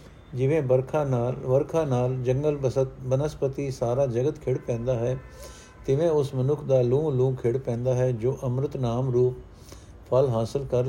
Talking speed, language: 160 wpm, Punjabi